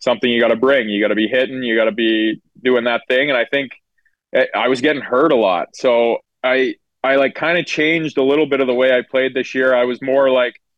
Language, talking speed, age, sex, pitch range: English, 260 wpm, 20-39, male, 115-135 Hz